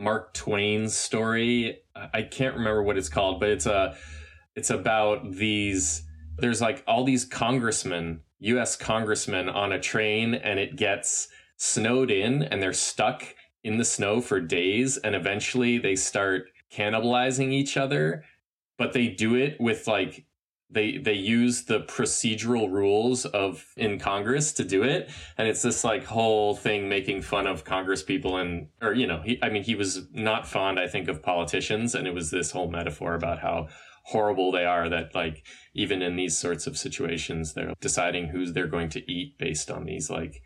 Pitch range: 95-130 Hz